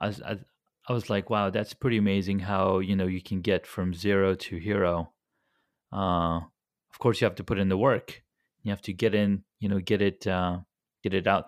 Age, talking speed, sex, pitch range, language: 30-49, 215 wpm, male, 95-110 Hz, English